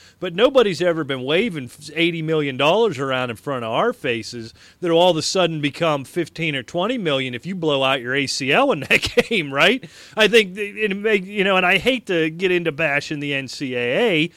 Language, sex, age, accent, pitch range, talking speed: English, male, 40-59, American, 130-175 Hz, 205 wpm